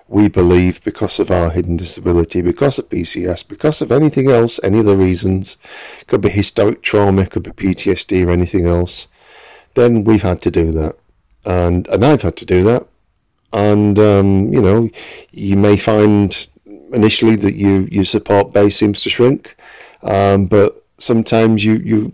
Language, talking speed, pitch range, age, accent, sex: English, 165 wpm, 90-105 Hz, 40-59, British, male